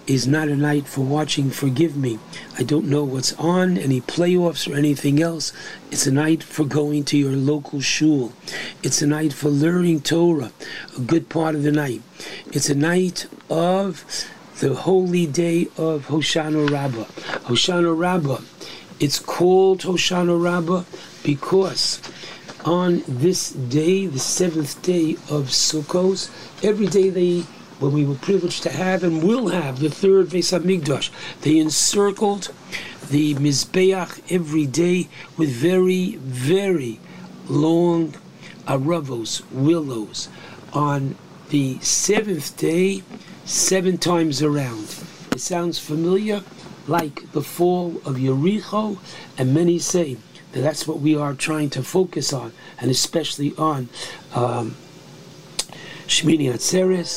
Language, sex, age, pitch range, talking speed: English, male, 60-79, 145-180 Hz, 130 wpm